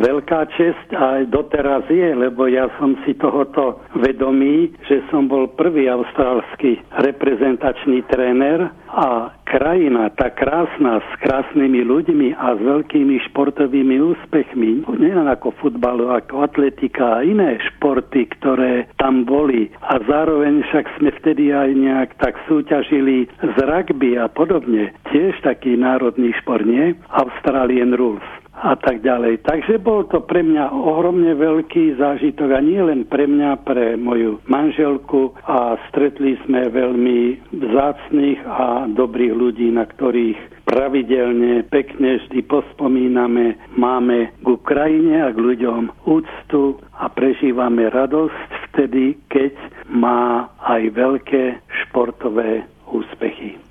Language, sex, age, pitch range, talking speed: Slovak, male, 60-79, 125-145 Hz, 125 wpm